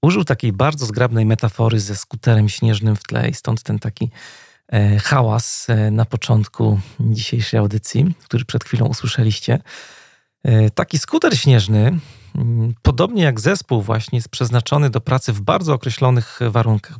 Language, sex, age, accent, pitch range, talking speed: Polish, male, 40-59, native, 110-130 Hz, 135 wpm